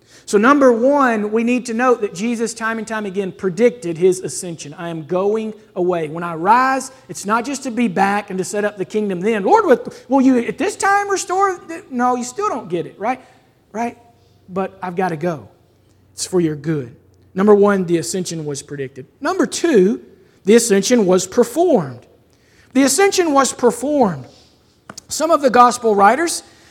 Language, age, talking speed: English, 40-59, 180 wpm